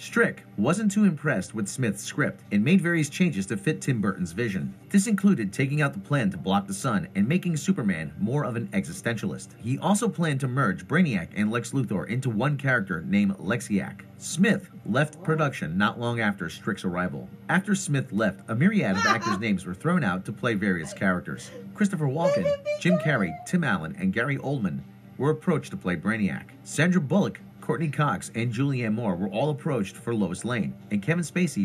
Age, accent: 30-49, American